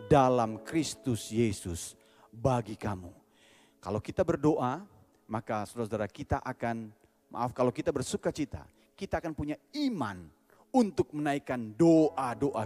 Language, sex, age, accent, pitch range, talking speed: Indonesian, male, 30-49, native, 105-150 Hz, 120 wpm